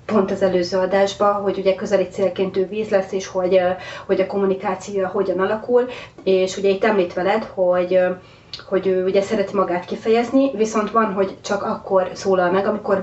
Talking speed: 175 wpm